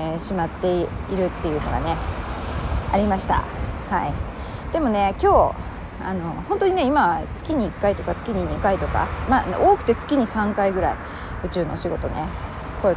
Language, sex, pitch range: Japanese, female, 185-315 Hz